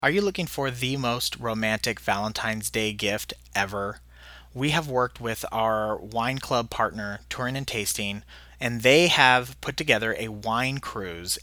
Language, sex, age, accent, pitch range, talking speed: English, male, 30-49, American, 115-140 Hz, 160 wpm